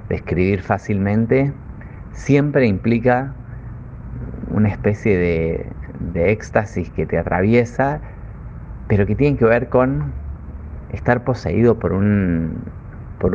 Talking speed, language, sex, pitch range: 110 wpm, Spanish, male, 85-115 Hz